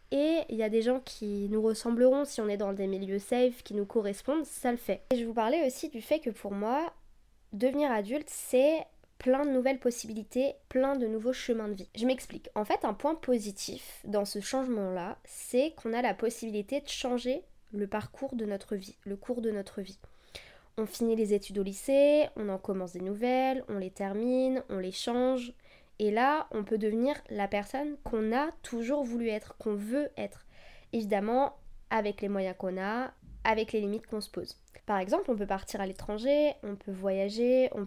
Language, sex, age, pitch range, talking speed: French, female, 20-39, 205-260 Hz, 200 wpm